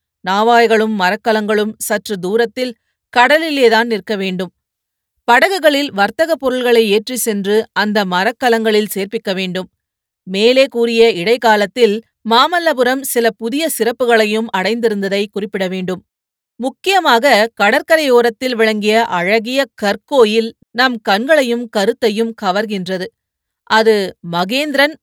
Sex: female